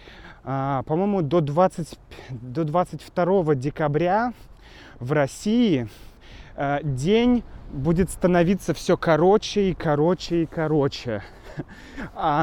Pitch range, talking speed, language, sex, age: 145-190 Hz, 85 wpm, Russian, male, 20-39